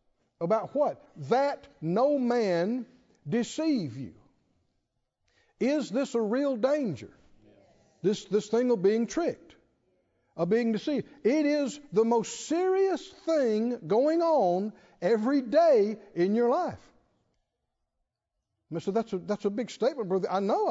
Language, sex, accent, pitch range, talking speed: English, male, American, 195-275 Hz, 125 wpm